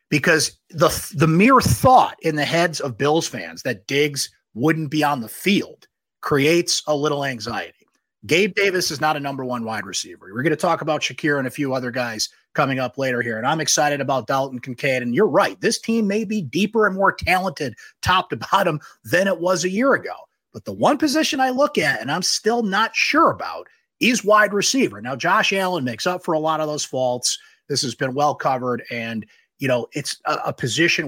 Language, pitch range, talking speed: English, 130-195 Hz, 215 wpm